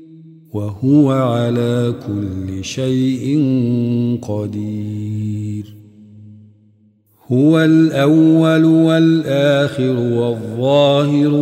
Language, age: Arabic, 50-69